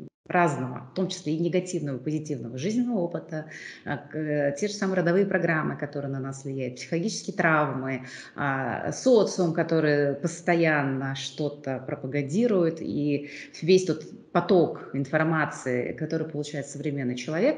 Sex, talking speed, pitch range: female, 120 wpm, 145-195 Hz